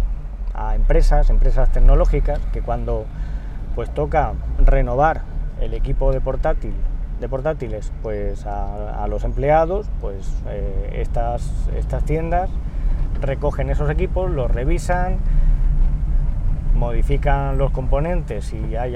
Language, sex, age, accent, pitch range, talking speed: Spanish, male, 20-39, Spanish, 105-145 Hz, 110 wpm